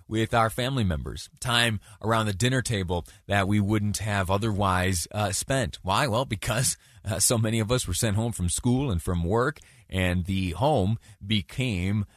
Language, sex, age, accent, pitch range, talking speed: English, male, 30-49, American, 90-115 Hz, 180 wpm